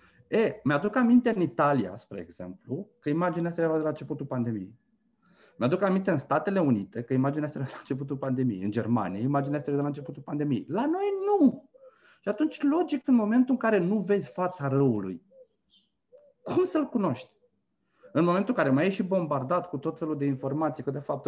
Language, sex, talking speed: Romanian, male, 195 wpm